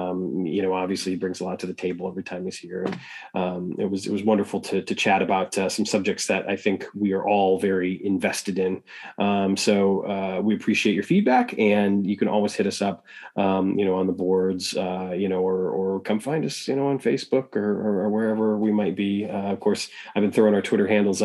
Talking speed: 235 wpm